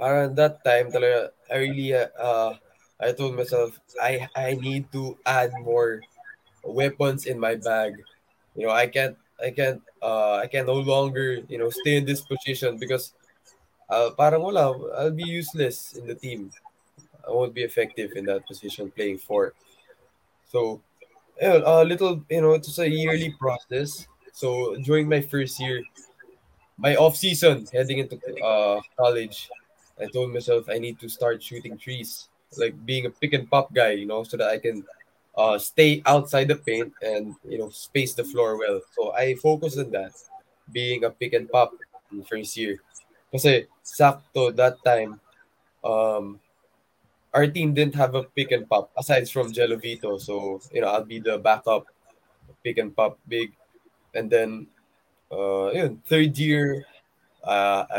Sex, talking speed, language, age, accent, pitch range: male, 155 wpm, Filipino, 20-39, native, 115-150 Hz